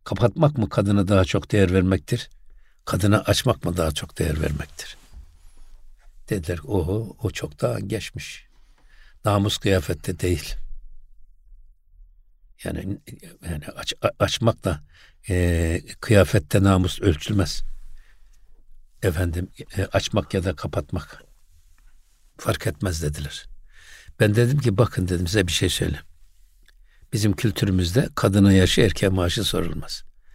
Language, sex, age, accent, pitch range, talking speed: Turkish, male, 60-79, native, 80-105 Hz, 115 wpm